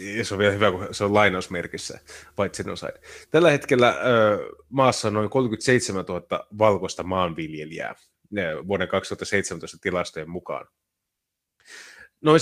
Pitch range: 95-130 Hz